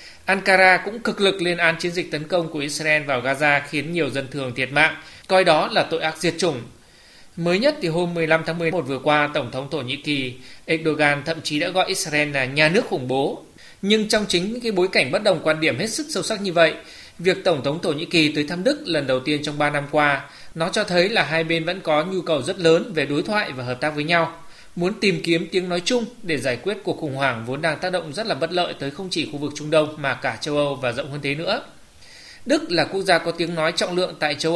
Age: 20-39